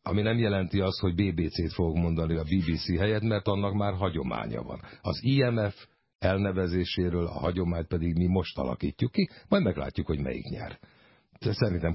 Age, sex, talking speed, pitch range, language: 60-79, male, 160 wpm, 80-105 Hz, Hungarian